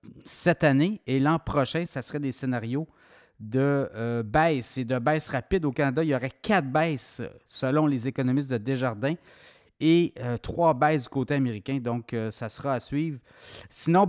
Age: 30-49